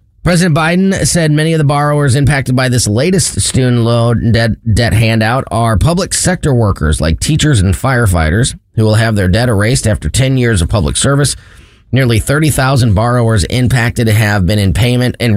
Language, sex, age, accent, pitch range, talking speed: English, male, 30-49, American, 100-145 Hz, 175 wpm